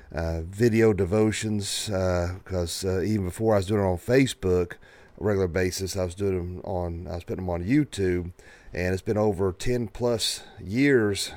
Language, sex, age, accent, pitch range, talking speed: English, male, 40-59, American, 95-120 Hz, 185 wpm